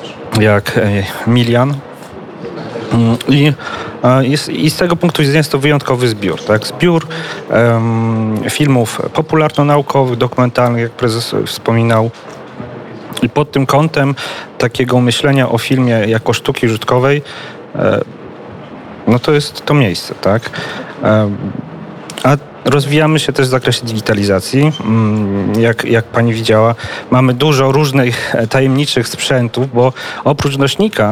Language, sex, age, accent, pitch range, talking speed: Polish, male, 40-59, native, 115-145 Hz, 125 wpm